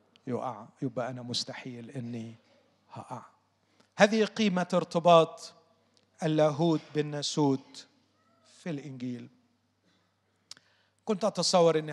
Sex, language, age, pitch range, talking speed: male, Arabic, 40-59, 140-170 Hz, 80 wpm